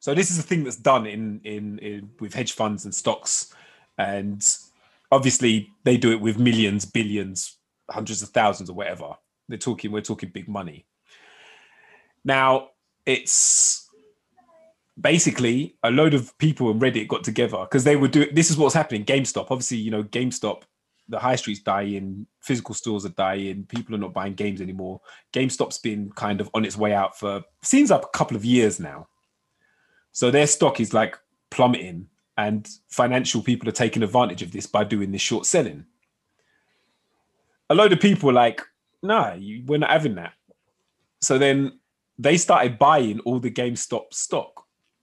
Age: 20-39